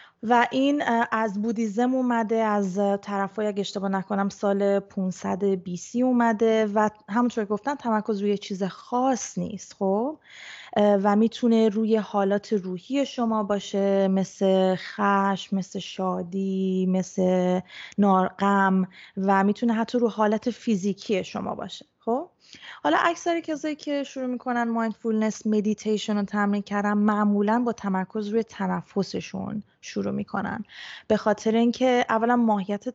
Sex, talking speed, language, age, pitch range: female, 125 wpm, Persian, 20-39, 195-225 Hz